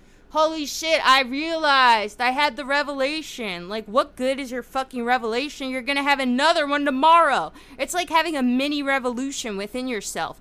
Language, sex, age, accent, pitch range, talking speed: English, female, 20-39, American, 230-310 Hz, 175 wpm